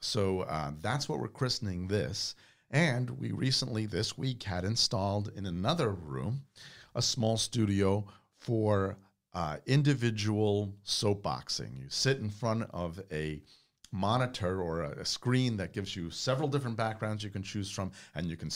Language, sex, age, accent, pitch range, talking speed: English, male, 50-69, American, 90-115 Hz, 150 wpm